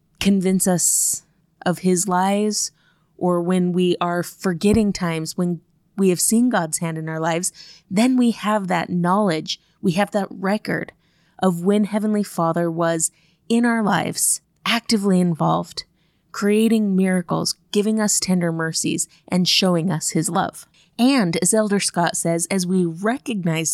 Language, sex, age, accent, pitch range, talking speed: English, female, 20-39, American, 165-200 Hz, 145 wpm